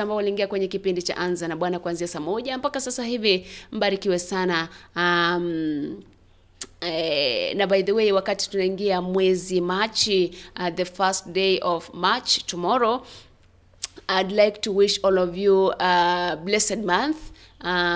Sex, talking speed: female, 125 wpm